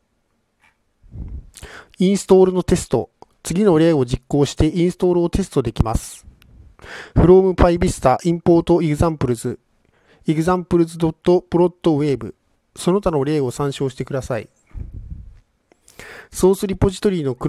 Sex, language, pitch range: male, Japanese, 135-180 Hz